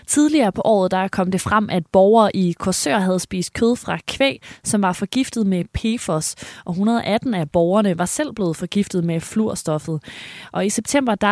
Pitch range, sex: 170-220 Hz, female